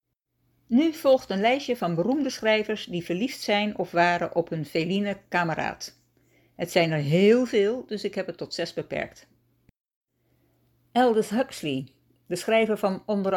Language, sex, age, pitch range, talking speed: Dutch, female, 60-79, 175-240 Hz, 150 wpm